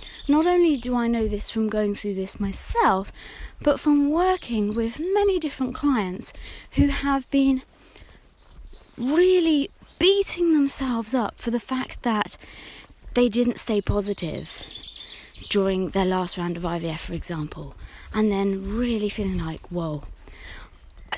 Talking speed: 135 wpm